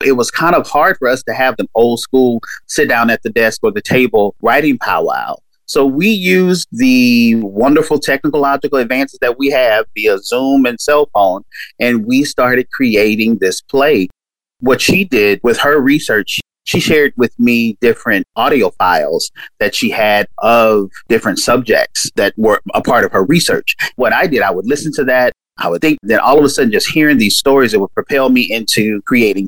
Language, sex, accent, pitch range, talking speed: English, male, American, 115-150 Hz, 195 wpm